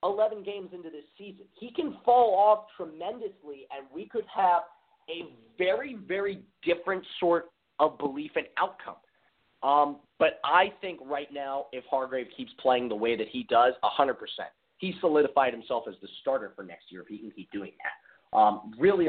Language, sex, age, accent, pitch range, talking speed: English, male, 30-49, American, 130-205 Hz, 175 wpm